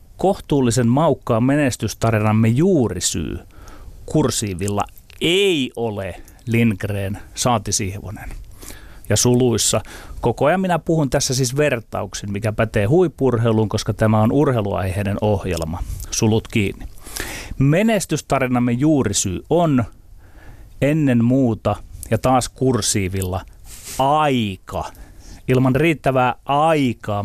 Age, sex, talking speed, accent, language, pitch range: 30-49, male, 90 wpm, native, Finnish, 100-135 Hz